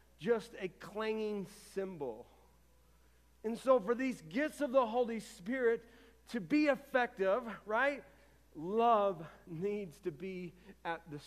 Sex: male